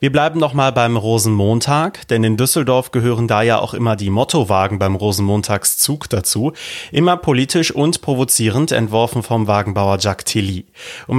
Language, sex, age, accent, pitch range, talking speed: German, male, 30-49, German, 110-135 Hz, 155 wpm